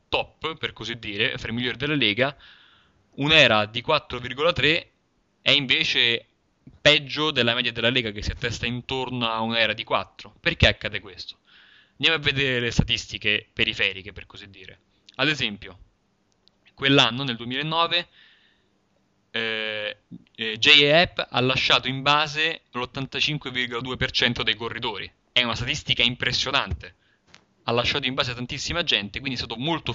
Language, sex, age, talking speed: Italian, male, 20-39, 130 wpm